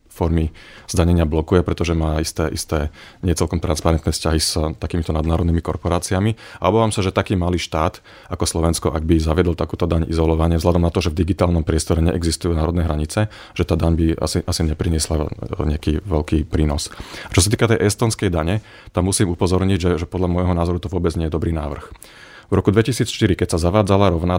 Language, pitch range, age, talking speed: Slovak, 85-100 Hz, 30-49, 190 wpm